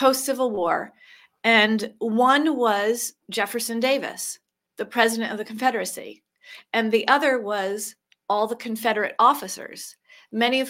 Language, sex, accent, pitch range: English, female, American, 205-275 Hz